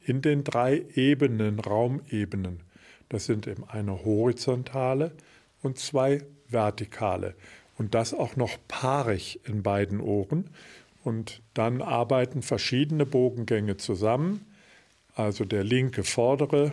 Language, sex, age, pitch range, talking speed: German, male, 50-69, 110-135 Hz, 110 wpm